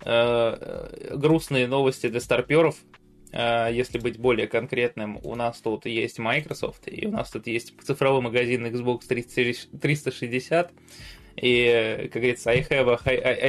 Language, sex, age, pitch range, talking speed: Russian, male, 20-39, 120-135 Hz, 125 wpm